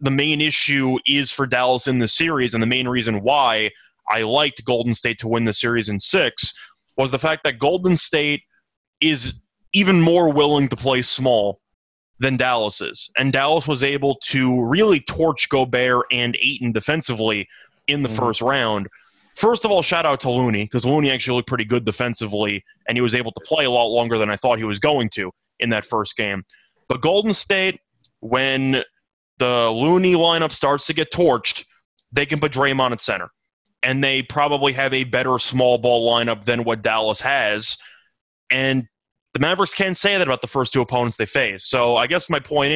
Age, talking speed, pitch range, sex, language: 20-39, 190 wpm, 120-150 Hz, male, English